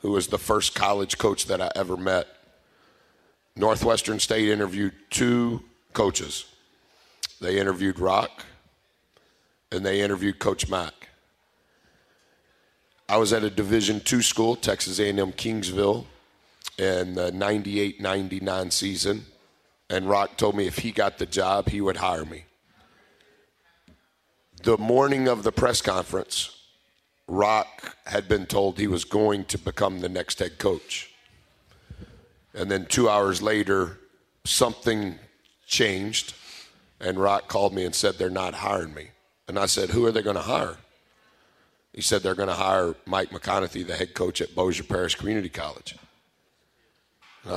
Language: English